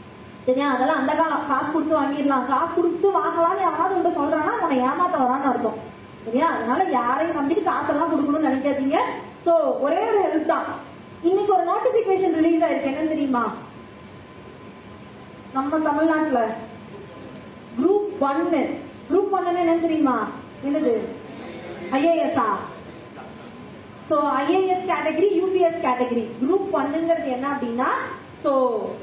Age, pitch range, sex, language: 20-39, 270-350 Hz, female, Tamil